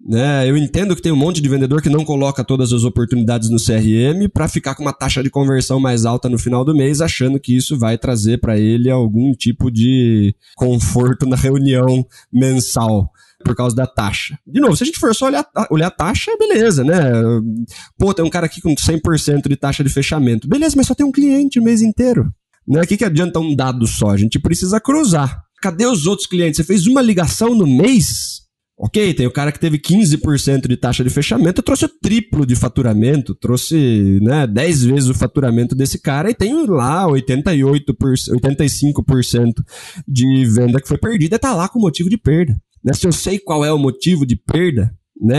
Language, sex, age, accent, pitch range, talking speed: Portuguese, male, 20-39, Brazilian, 125-170 Hz, 205 wpm